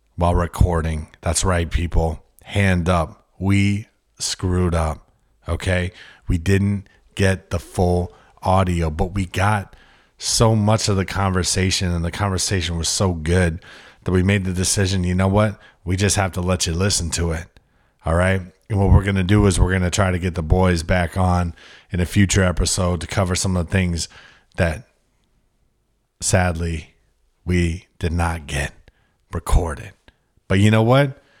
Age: 30-49